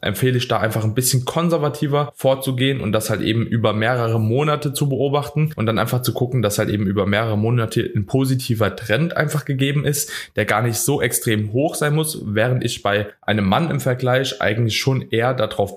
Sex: male